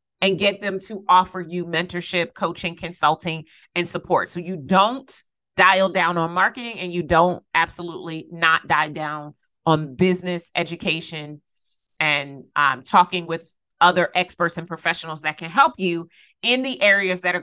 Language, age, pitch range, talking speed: English, 30-49, 165-210 Hz, 155 wpm